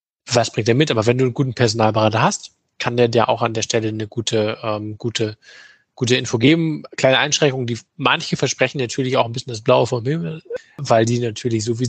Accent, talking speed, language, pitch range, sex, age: German, 215 wpm, English, 115-135 Hz, male, 20-39